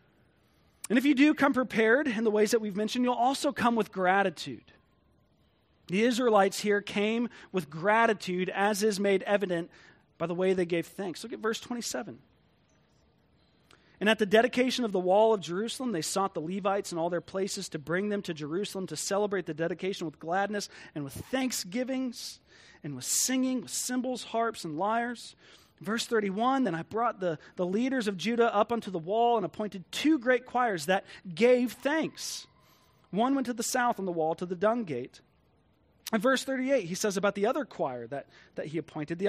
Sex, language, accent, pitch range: male, English, American, 175-235 Hz